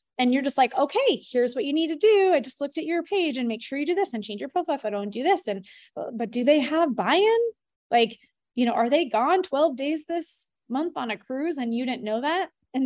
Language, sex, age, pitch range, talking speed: English, female, 20-39, 215-295 Hz, 265 wpm